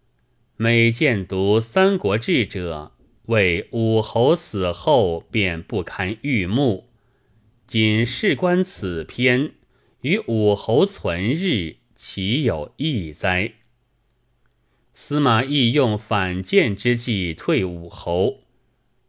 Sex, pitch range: male, 95-125 Hz